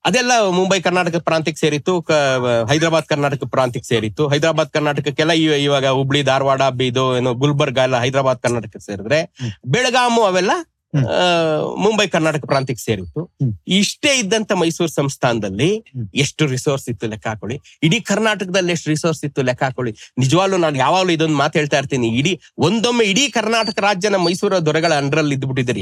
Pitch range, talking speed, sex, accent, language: 135-195 Hz, 130 wpm, male, native, Kannada